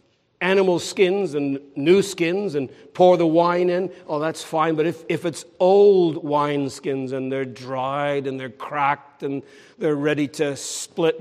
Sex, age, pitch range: male, 60-79, 155-195 Hz